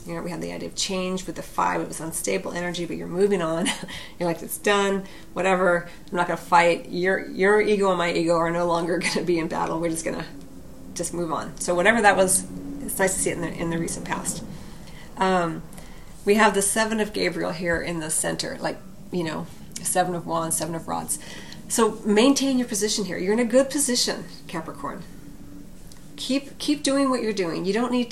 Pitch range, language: 175-210 Hz, English